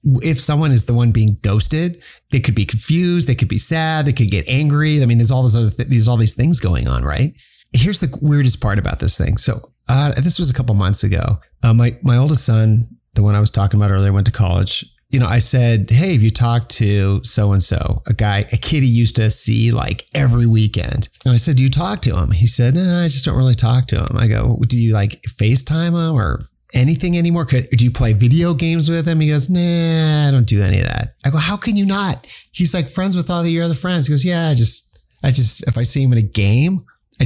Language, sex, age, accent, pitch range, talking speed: English, male, 30-49, American, 110-150 Hz, 260 wpm